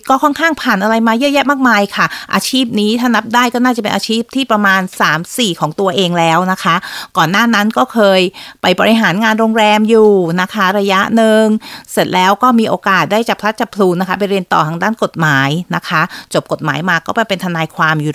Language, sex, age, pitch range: Thai, female, 30-49, 170-210 Hz